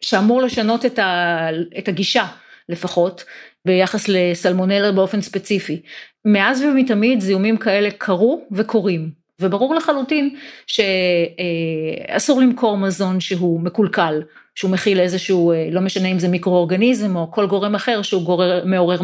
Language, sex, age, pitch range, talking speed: Hebrew, female, 40-59, 175-220 Hz, 115 wpm